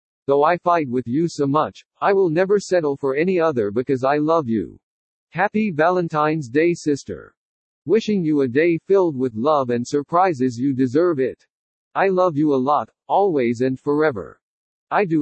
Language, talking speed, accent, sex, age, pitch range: English, 175 wpm, American, male, 50-69, 135-175 Hz